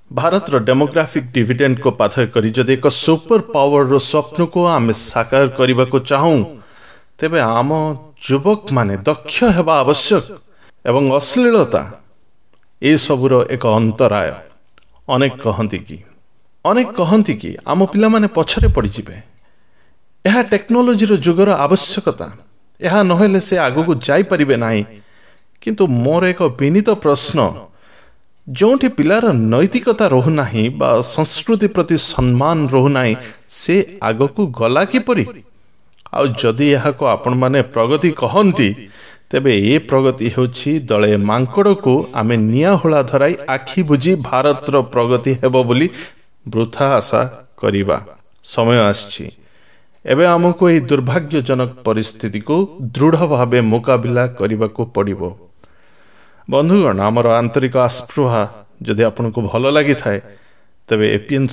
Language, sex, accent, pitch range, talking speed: Hindi, male, native, 115-165 Hz, 100 wpm